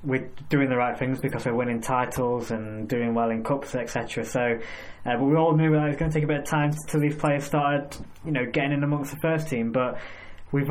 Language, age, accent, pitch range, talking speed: English, 10-29, British, 120-140 Hz, 250 wpm